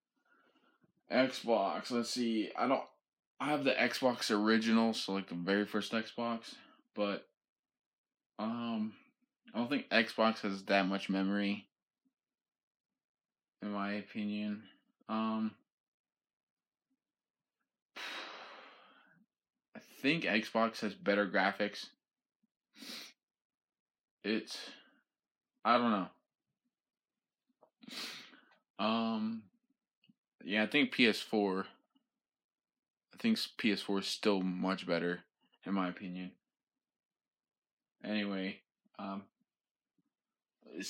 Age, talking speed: 20-39, 90 wpm